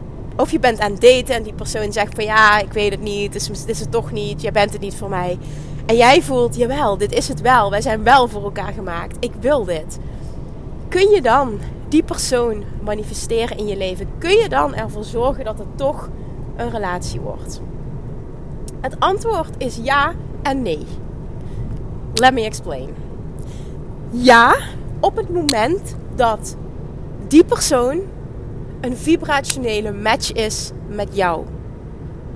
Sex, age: female, 30-49